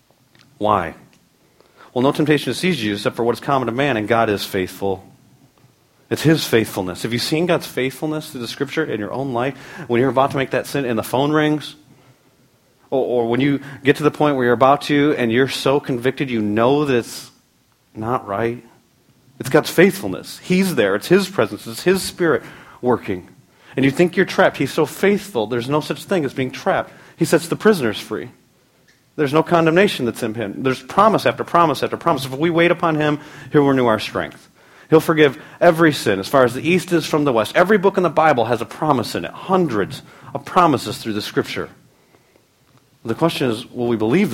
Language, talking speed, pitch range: English, 210 wpm, 120-150 Hz